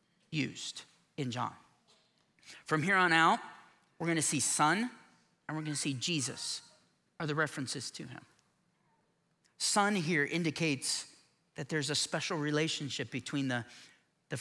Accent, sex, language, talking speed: American, male, English, 140 wpm